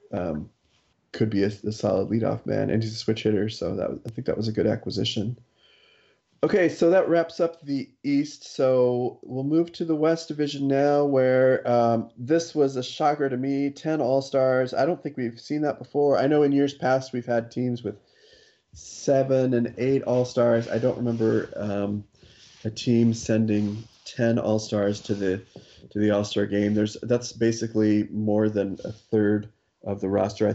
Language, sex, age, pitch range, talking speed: English, male, 30-49, 105-130 Hz, 185 wpm